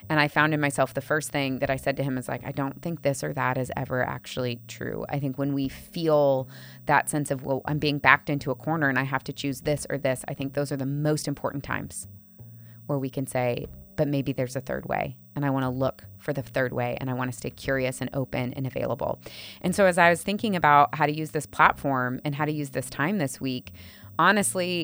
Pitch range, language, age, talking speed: 130-160 Hz, English, 20-39, 255 wpm